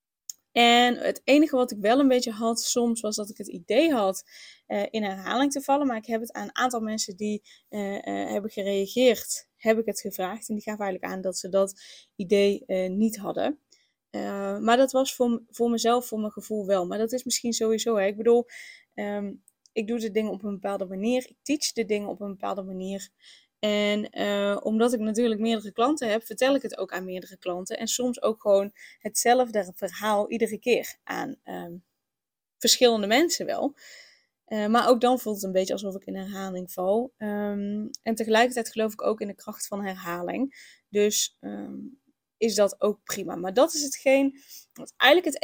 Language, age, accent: Dutch, 10-29, Dutch